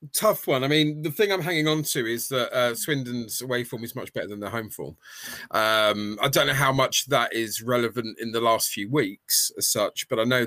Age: 30-49